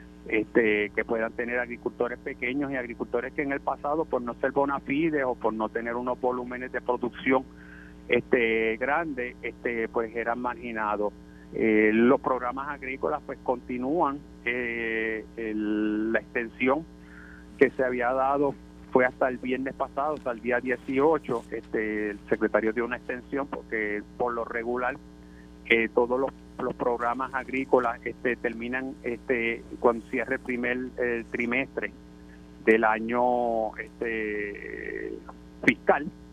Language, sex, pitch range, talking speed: Spanish, male, 110-130 Hz, 130 wpm